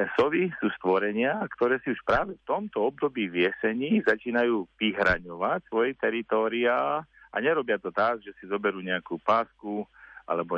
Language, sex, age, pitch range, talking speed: Slovak, male, 40-59, 95-120 Hz, 140 wpm